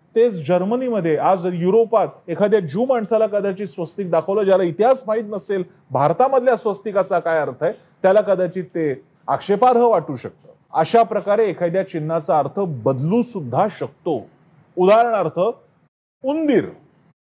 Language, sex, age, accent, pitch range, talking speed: Marathi, male, 40-59, native, 170-230 Hz, 125 wpm